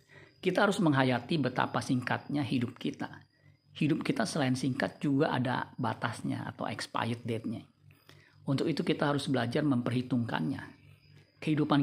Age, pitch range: 50-69, 125-145 Hz